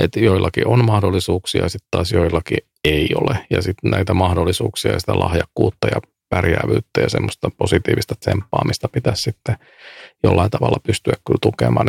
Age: 40-59